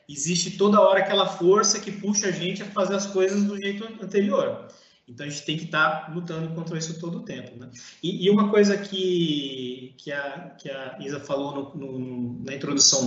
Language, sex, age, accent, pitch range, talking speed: Portuguese, male, 20-39, Brazilian, 155-200 Hz, 190 wpm